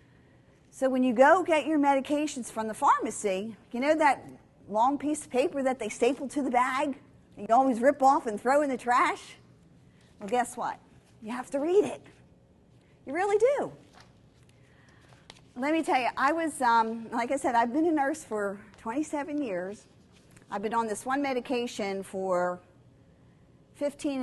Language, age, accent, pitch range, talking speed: English, 50-69, American, 200-280 Hz, 170 wpm